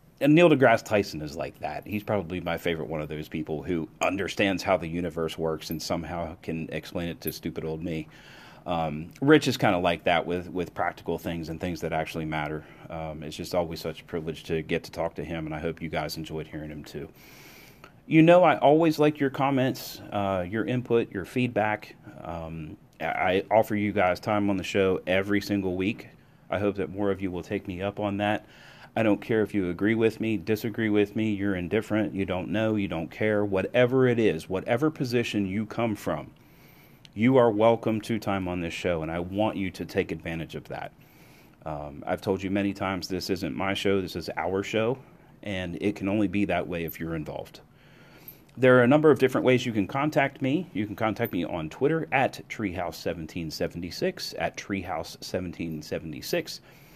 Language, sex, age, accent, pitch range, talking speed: English, male, 30-49, American, 85-110 Hz, 205 wpm